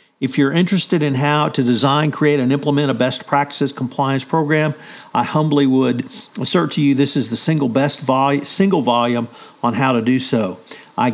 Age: 50-69